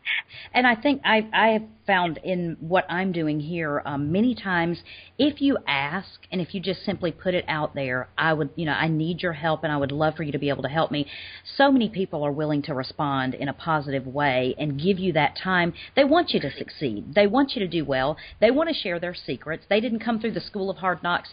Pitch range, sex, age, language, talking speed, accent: 145-190 Hz, female, 40-59, English, 250 wpm, American